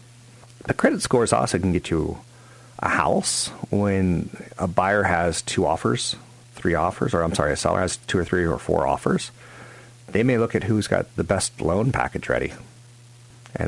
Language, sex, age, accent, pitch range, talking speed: English, male, 50-69, American, 85-120 Hz, 180 wpm